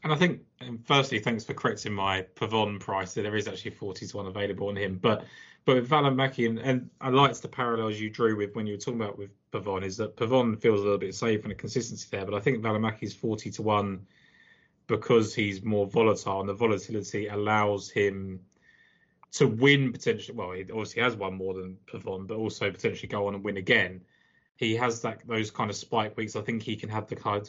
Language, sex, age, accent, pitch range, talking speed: English, male, 20-39, British, 105-125 Hz, 230 wpm